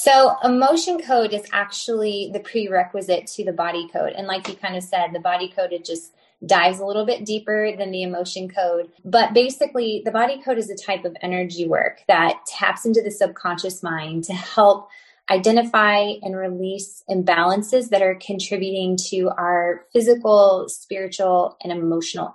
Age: 20-39